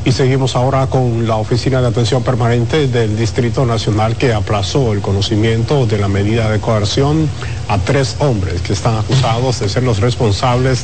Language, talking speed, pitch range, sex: Spanish, 170 wpm, 110-135 Hz, male